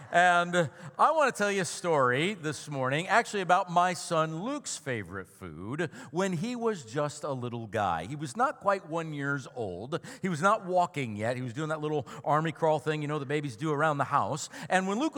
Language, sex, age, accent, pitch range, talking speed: English, male, 50-69, American, 140-195 Hz, 220 wpm